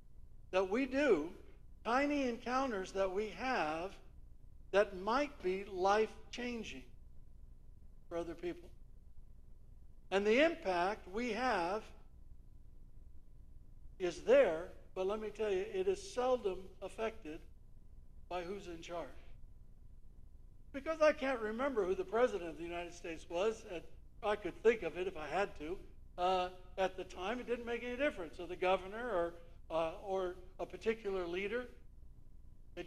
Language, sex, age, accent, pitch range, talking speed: English, male, 60-79, American, 180-255 Hz, 140 wpm